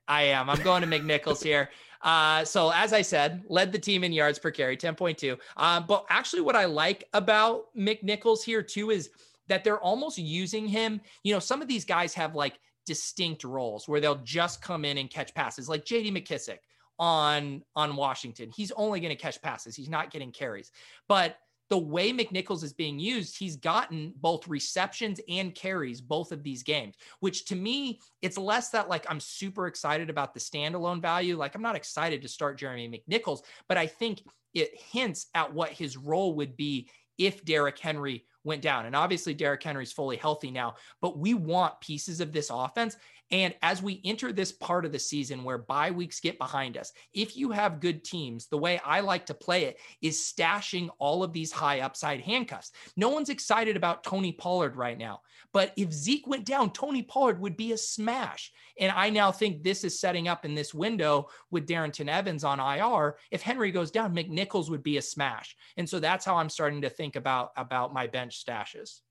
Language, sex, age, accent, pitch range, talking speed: English, male, 30-49, American, 145-200 Hz, 200 wpm